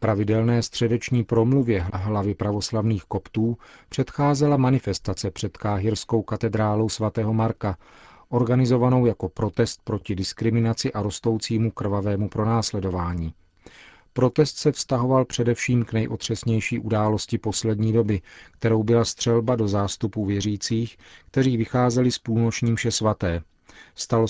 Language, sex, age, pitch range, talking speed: Czech, male, 40-59, 100-115 Hz, 110 wpm